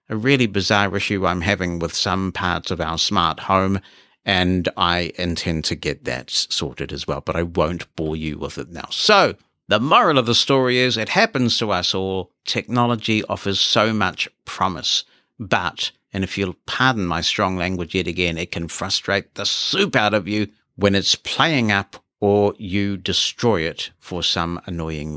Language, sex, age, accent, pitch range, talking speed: English, male, 50-69, British, 90-130 Hz, 180 wpm